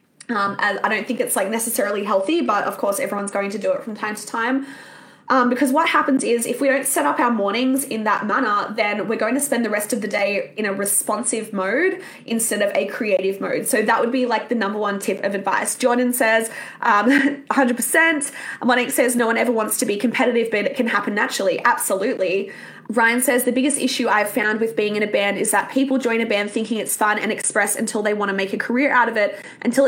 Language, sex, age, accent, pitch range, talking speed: English, female, 20-39, Australian, 210-265 Hz, 240 wpm